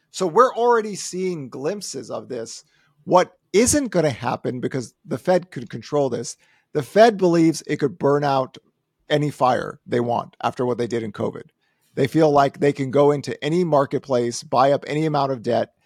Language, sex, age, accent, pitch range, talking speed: English, male, 50-69, American, 130-165 Hz, 190 wpm